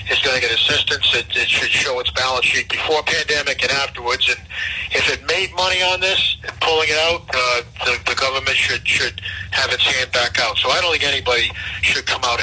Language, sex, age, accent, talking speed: English, male, 50-69, American, 220 wpm